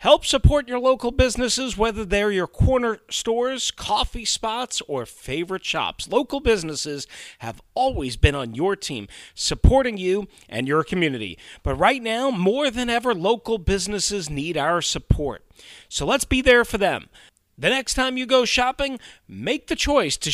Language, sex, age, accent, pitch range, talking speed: English, male, 40-59, American, 155-245 Hz, 160 wpm